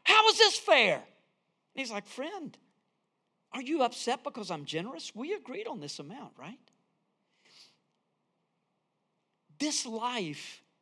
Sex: male